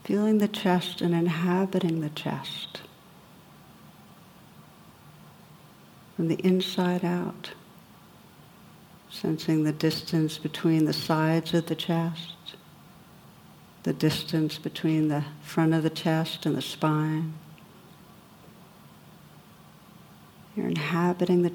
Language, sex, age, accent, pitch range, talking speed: English, female, 60-79, American, 160-180 Hz, 95 wpm